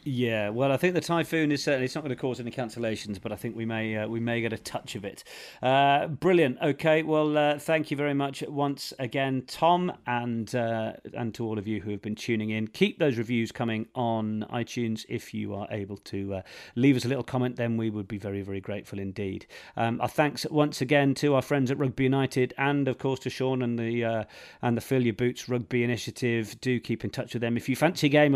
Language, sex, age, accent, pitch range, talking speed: English, male, 40-59, British, 120-170 Hz, 240 wpm